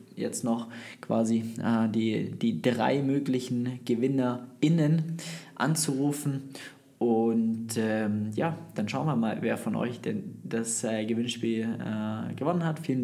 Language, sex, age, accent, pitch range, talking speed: German, male, 20-39, German, 115-140 Hz, 130 wpm